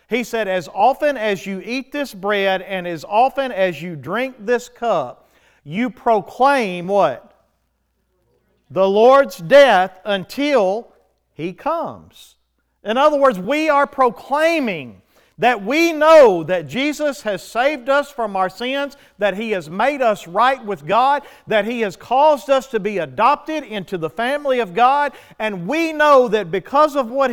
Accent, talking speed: American, 155 wpm